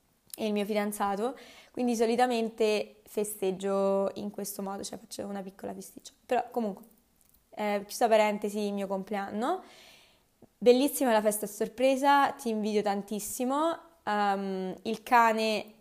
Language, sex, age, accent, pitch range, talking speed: Italian, female, 20-39, native, 200-235 Hz, 125 wpm